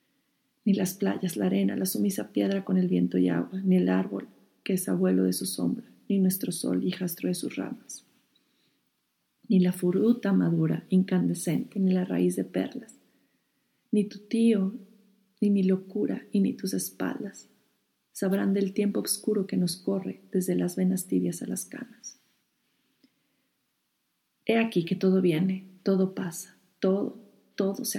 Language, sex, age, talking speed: Spanish, female, 40-59, 160 wpm